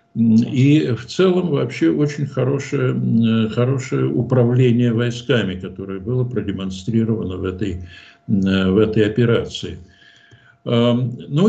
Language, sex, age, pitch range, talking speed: Russian, male, 60-79, 110-145 Hz, 95 wpm